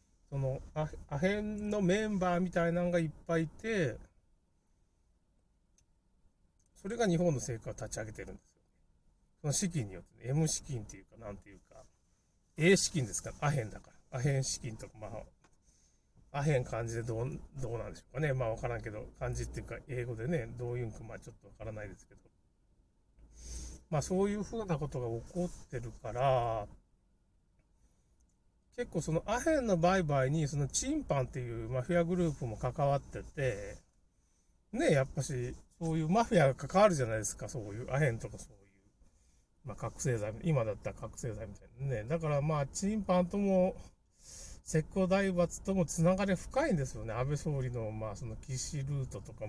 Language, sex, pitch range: Japanese, male, 110-165 Hz